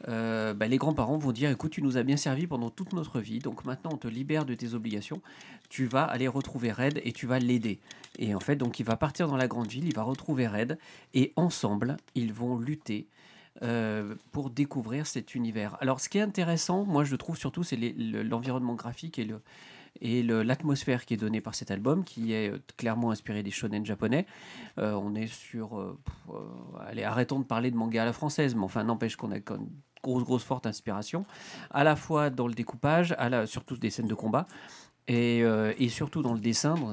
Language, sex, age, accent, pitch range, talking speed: French, male, 40-59, French, 115-145 Hz, 225 wpm